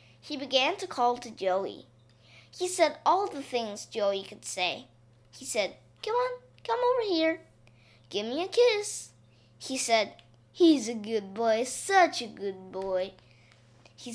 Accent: American